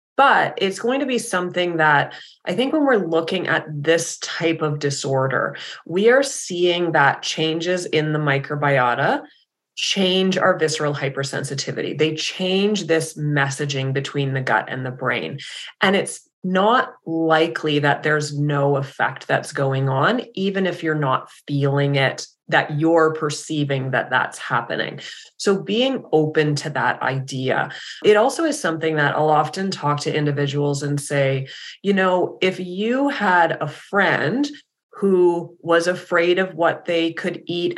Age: 20-39